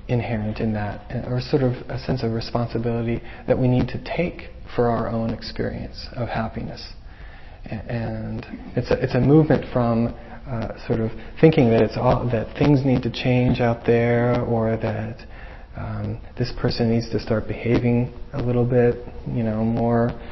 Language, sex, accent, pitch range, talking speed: English, male, American, 115-135 Hz, 170 wpm